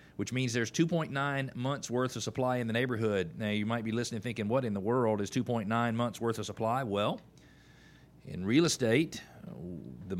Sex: male